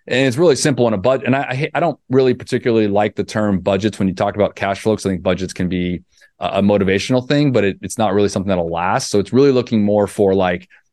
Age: 30-49